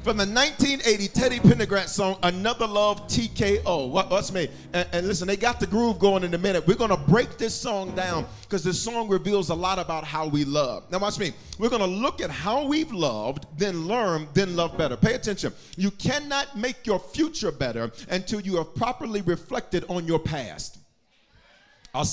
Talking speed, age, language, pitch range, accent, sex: 195 wpm, 40-59, English, 175-230 Hz, American, male